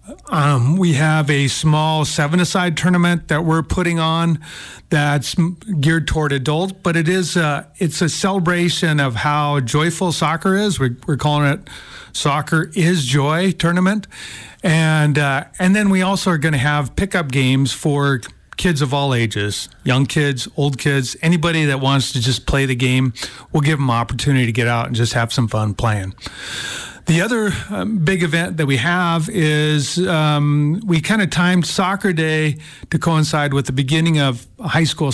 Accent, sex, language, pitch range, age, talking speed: American, male, English, 135-170 Hz, 40-59, 175 wpm